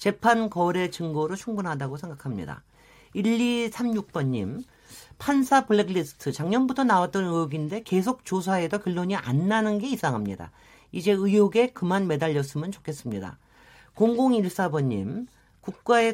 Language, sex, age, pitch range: Korean, male, 40-59, 145-215 Hz